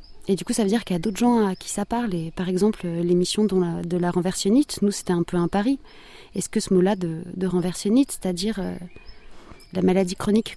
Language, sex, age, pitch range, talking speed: French, female, 30-49, 175-210 Hz, 240 wpm